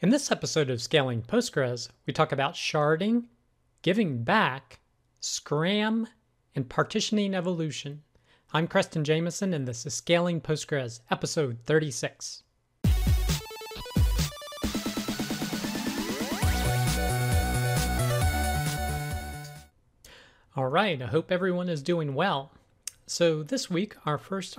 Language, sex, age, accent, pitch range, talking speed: English, male, 40-59, American, 140-175 Hz, 95 wpm